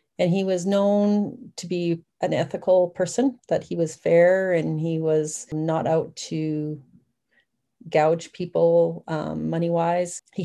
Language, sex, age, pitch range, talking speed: English, female, 40-59, 155-180 Hz, 140 wpm